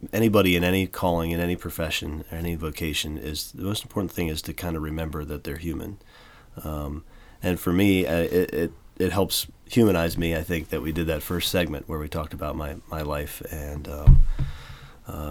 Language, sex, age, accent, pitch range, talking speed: English, male, 30-49, American, 80-95 Hz, 200 wpm